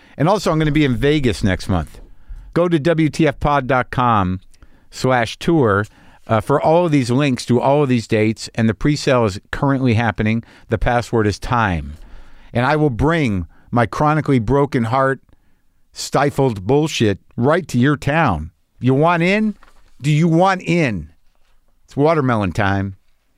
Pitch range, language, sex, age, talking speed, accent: 110-150 Hz, English, male, 50-69, 155 wpm, American